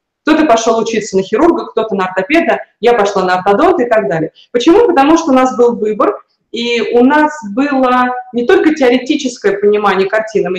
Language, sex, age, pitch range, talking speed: Russian, female, 30-49, 205-255 Hz, 180 wpm